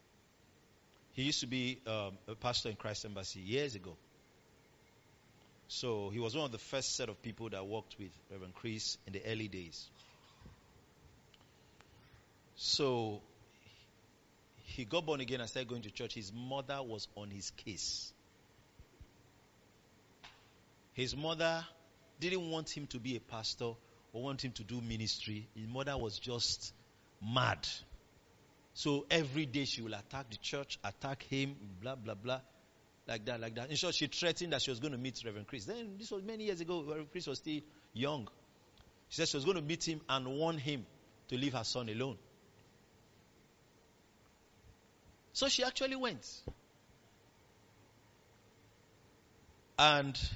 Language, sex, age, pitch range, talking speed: English, male, 50-69, 105-140 Hz, 155 wpm